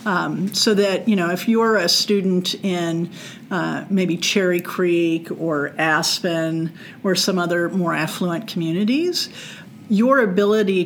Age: 50-69